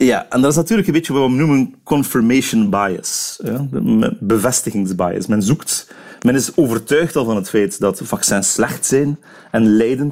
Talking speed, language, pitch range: 170 wpm, Dutch, 105-155 Hz